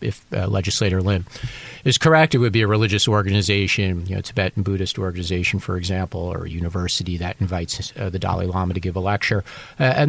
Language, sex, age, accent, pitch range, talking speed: English, male, 40-59, American, 95-120 Hz, 200 wpm